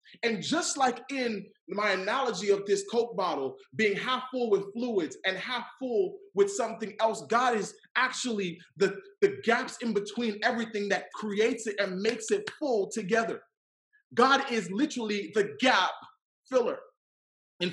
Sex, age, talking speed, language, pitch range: male, 20-39, 150 wpm, English, 200-255 Hz